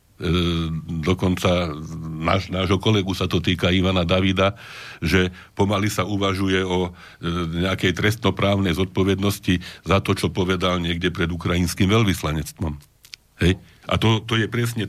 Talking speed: 130 wpm